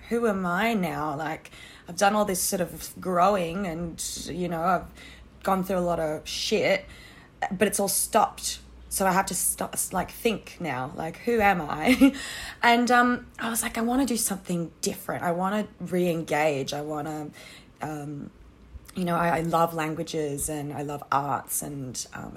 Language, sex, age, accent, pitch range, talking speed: English, female, 20-39, Australian, 160-215 Hz, 180 wpm